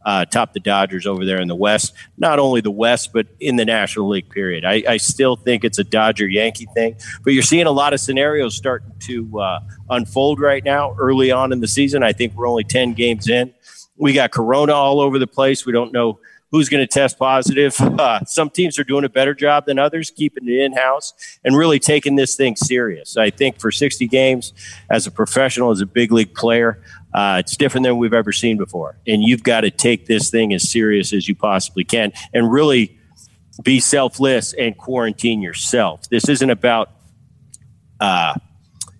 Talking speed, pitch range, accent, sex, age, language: 205 wpm, 110-135 Hz, American, male, 50-69, English